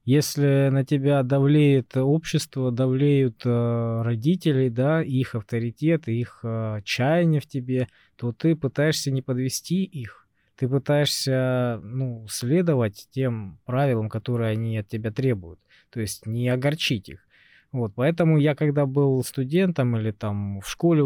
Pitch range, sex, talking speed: 115-145 Hz, male, 125 wpm